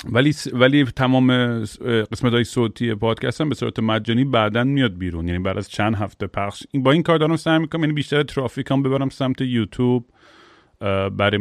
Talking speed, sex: 180 wpm, male